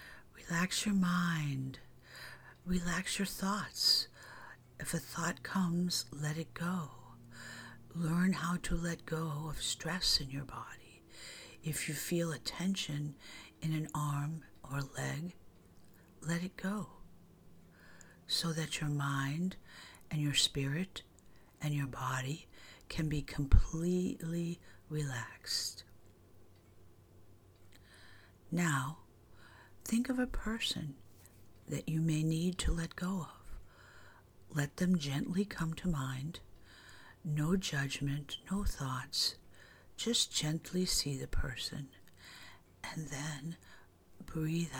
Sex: female